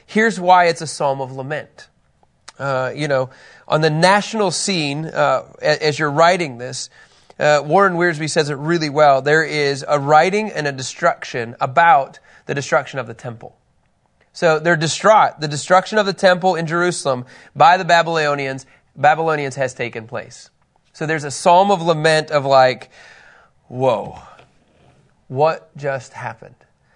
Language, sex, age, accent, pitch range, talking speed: English, male, 30-49, American, 145-180 Hz, 150 wpm